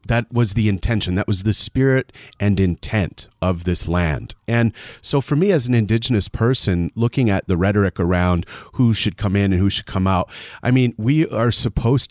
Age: 40-59